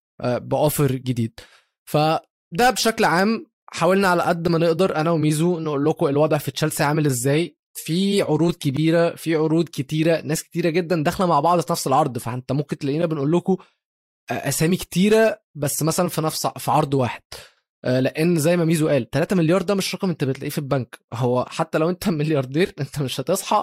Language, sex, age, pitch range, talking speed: Arabic, male, 20-39, 135-170 Hz, 180 wpm